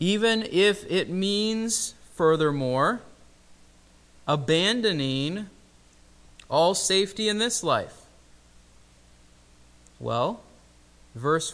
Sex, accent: male, American